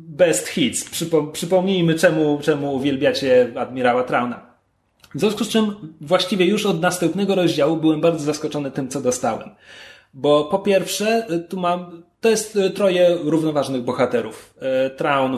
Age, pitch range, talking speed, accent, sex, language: 30-49, 135-175 Hz, 135 wpm, native, male, Polish